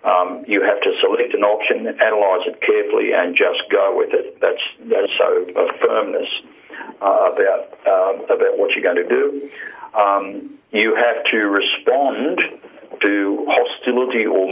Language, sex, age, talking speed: English, male, 50-69, 155 wpm